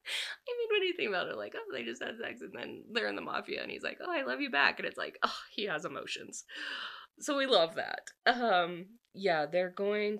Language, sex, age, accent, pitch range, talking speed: English, female, 20-39, American, 155-200 Hz, 255 wpm